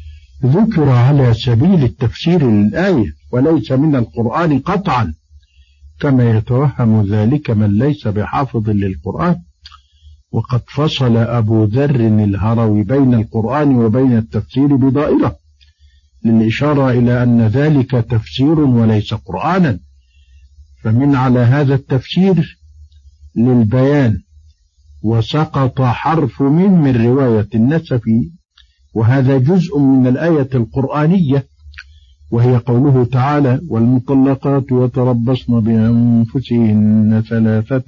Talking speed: 90 wpm